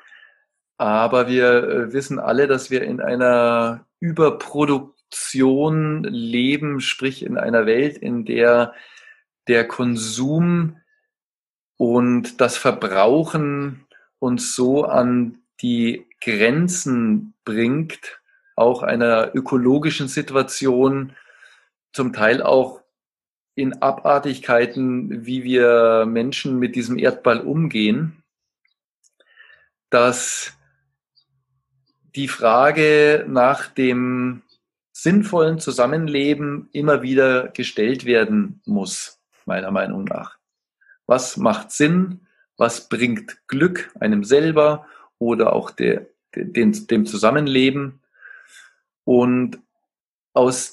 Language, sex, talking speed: German, male, 85 wpm